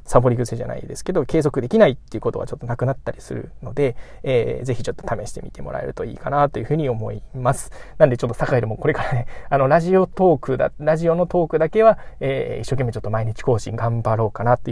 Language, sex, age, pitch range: Japanese, male, 20-39, 115-145 Hz